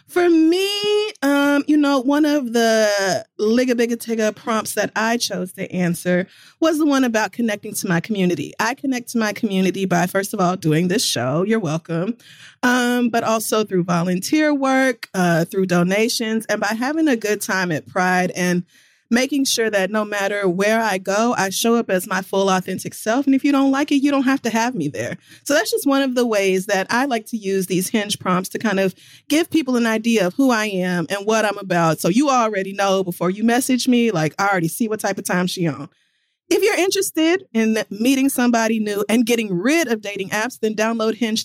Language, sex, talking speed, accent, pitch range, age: English, female, 215 wpm, American, 185-270 Hz, 30-49